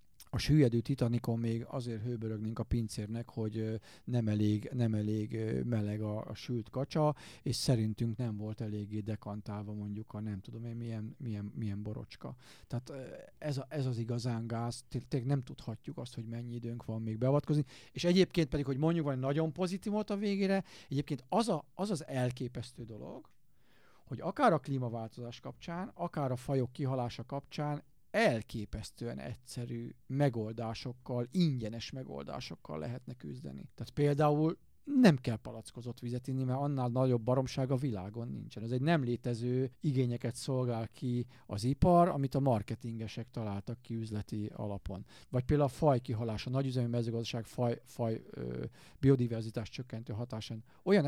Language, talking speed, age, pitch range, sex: Hungarian, 150 wpm, 50-69, 115-140 Hz, male